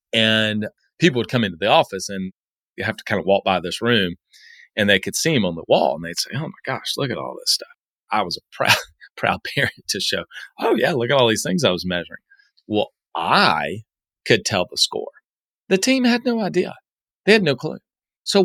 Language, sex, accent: English, male, American